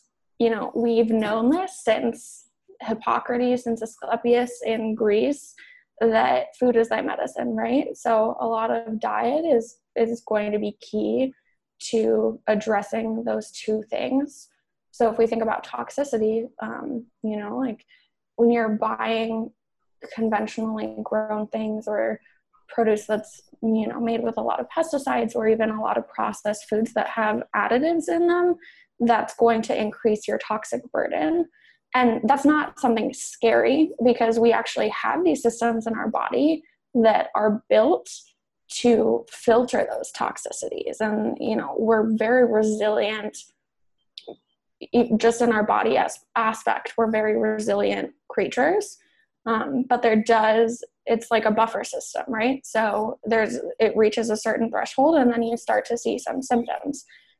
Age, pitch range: 20-39, 220-255 Hz